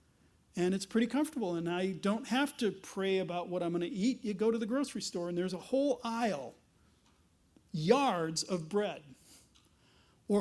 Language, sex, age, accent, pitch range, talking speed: English, male, 40-59, American, 170-225 Hz, 180 wpm